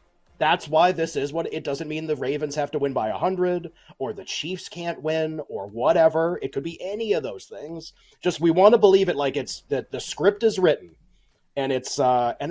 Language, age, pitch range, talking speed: English, 30-49, 140-200 Hz, 220 wpm